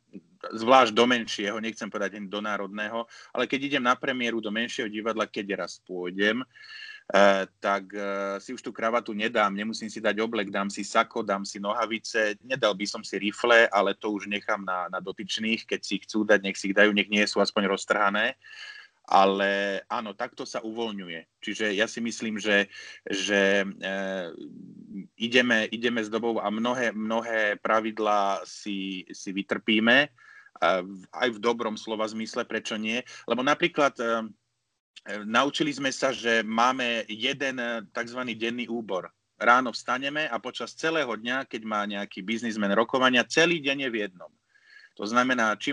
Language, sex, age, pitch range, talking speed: Slovak, male, 30-49, 105-125 Hz, 160 wpm